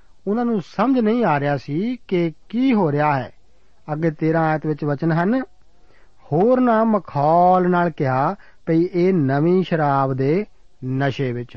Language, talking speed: Punjabi, 155 wpm